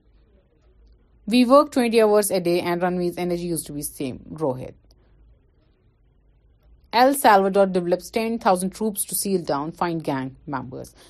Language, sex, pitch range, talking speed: Urdu, female, 150-200 Hz, 140 wpm